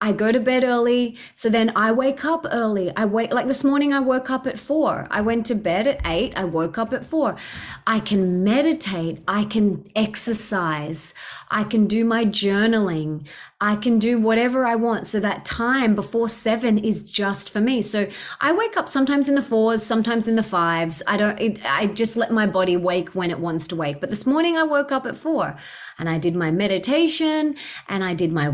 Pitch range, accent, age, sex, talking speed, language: 190-235 Hz, Australian, 30-49, female, 210 wpm, English